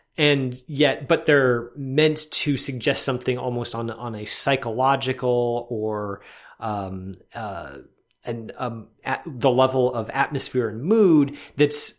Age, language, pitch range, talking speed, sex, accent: 30-49, English, 115-150 Hz, 130 wpm, male, American